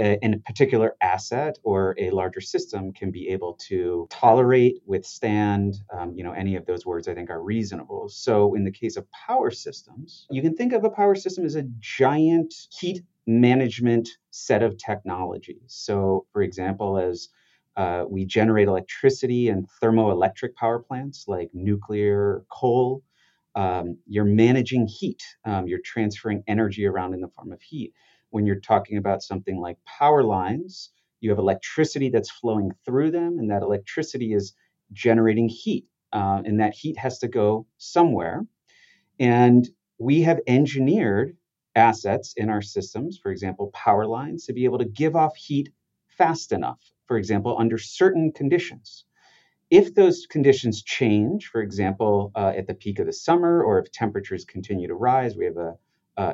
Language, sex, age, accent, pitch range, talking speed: English, male, 30-49, American, 100-145 Hz, 165 wpm